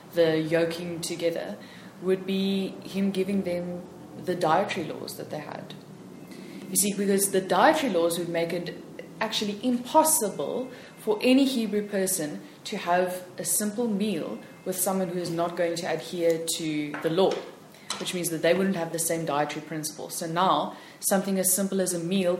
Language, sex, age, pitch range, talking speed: English, female, 20-39, 165-195 Hz, 170 wpm